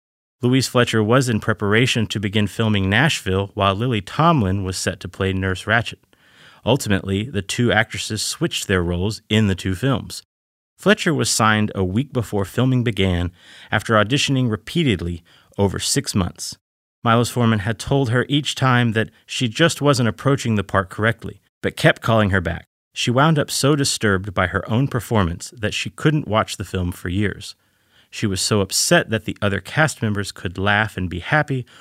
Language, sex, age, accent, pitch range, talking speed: English, male, 30-49, American, 95-125 Hz, 175 wpm